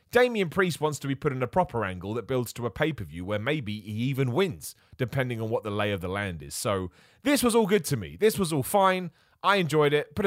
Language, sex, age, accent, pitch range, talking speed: English, male, 30-49, British, 110-155 Hz, 255 wpm